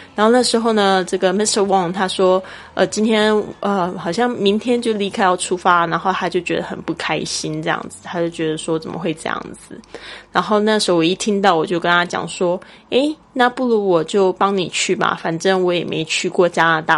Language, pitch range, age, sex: Chinese, 170-205 Hz, 20-39, female